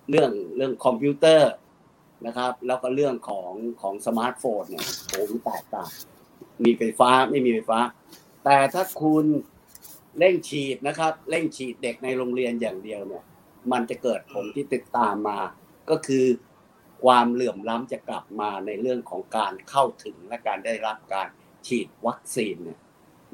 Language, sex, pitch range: Thai, male, 120-145 Hz